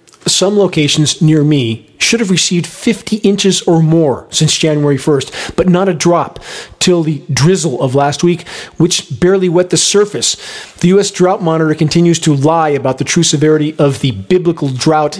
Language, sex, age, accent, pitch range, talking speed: English, male, 40-59, American, 150-185 Hz, 175 wpm